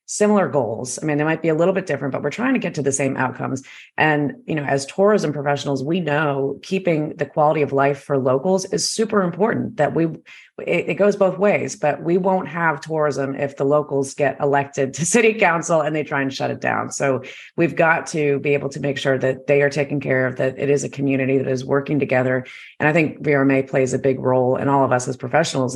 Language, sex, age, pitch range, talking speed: English, female, 30-49, 135-160 Hz, 240 wpm